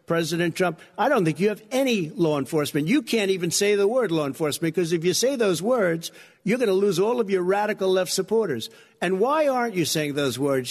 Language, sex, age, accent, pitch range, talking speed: English, male, 60-79, American, 170-210 Hz, 230 wpm